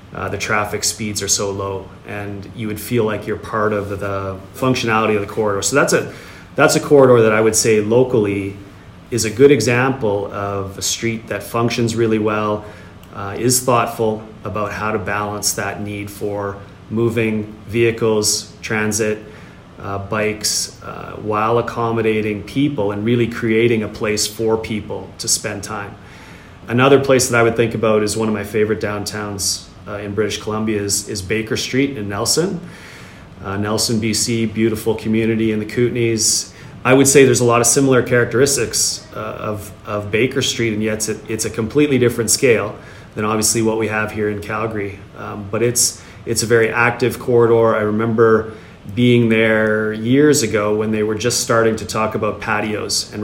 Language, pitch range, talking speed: English, 105-115 Hz, 180 wpm